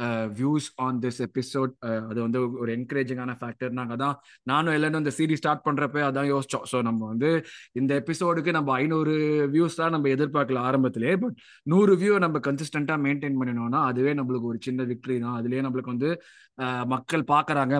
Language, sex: Tamil, male